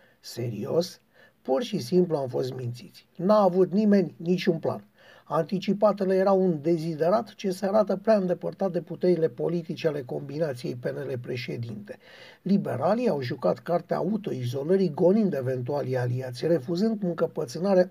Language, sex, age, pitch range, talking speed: Romanian, male, 50-69, 160-200 Hz, 130 wpm